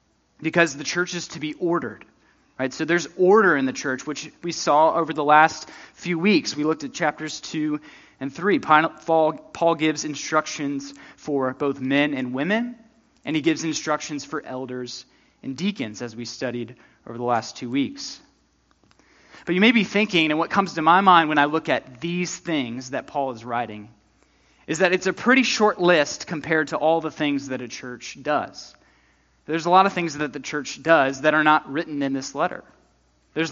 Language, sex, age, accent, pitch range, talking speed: English, male, 20-39, American, 135-180 Hz, 190 wpm